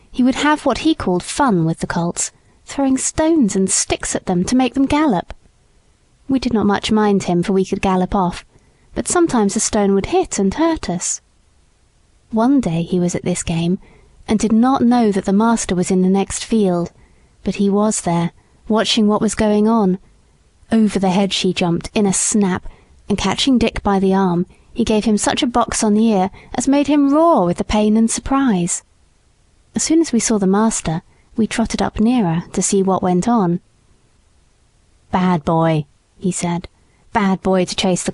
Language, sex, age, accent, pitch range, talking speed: English, female, 30-49, British, 175-225 Hz, 195 wpm